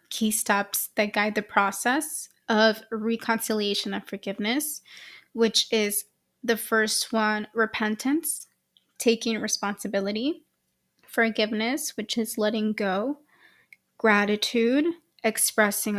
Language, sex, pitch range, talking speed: English, female, 205-235 Hz, 95 wpm